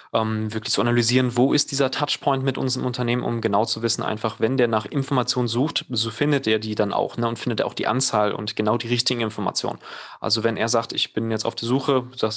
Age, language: 20-39, German